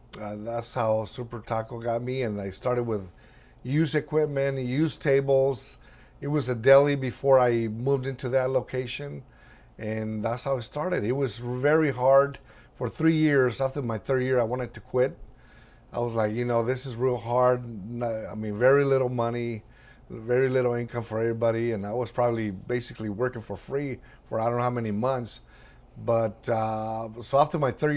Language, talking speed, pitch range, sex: English, 180 wpm, 115-135 Hz, male